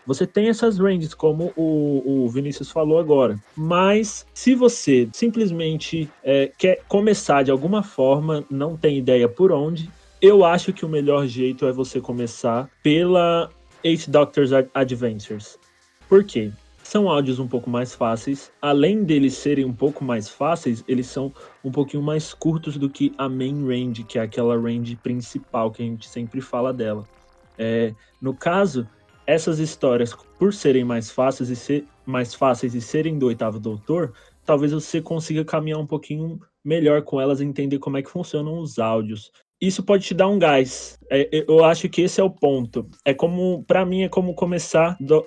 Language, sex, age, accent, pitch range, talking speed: Portuguese, male, 20-39, Brazilian, 125-160 Hz, 175 wpm